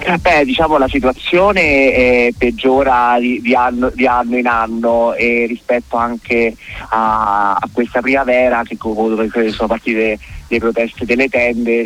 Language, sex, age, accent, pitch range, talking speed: Italian, male, 20-39, native, 110-120 Hz, 115 wpm